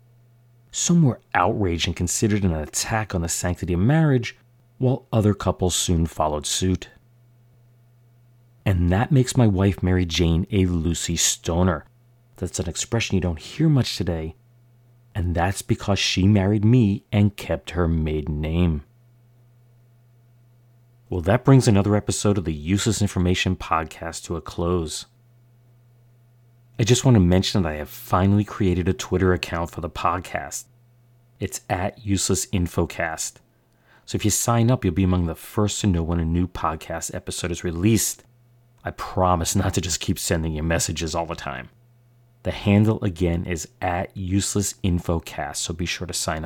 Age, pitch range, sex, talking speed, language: 40-59, 85-120 Hz, male, 155 wpm, English